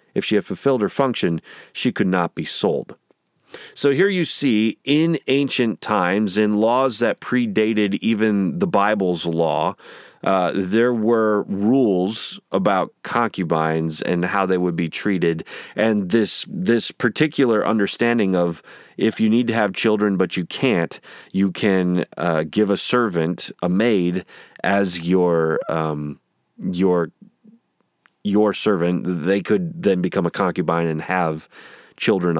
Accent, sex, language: American, male, English